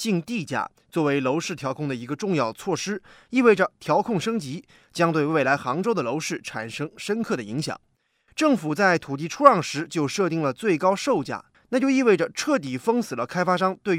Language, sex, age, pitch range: Chinese, male, 20-39, 155-245 Hz